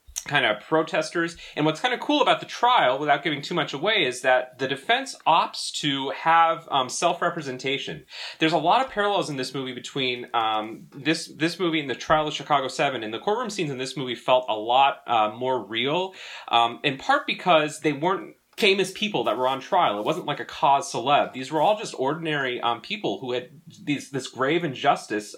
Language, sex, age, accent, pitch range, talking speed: English, male, 30-49, American, 130-185 Hz, 210 wpm